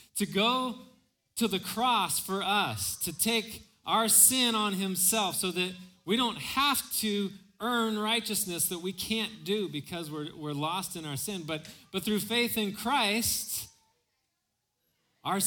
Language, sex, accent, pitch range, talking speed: English, male, American, 155-210 Hz, 150 wpm